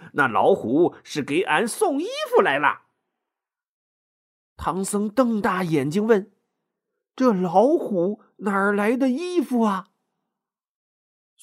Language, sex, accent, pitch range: Chinese, male, native, 170-260 Hz